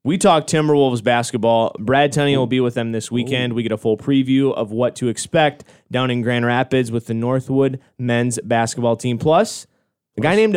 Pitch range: 120-150 Hz